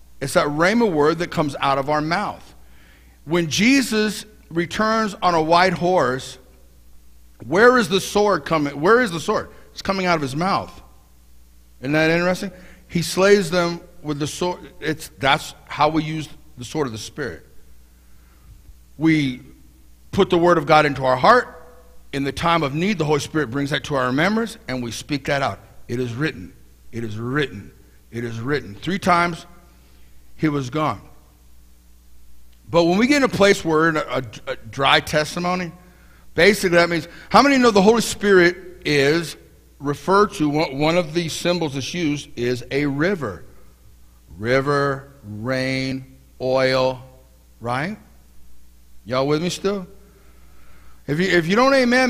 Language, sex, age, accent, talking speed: English, male, 50-69, American, 160 wpm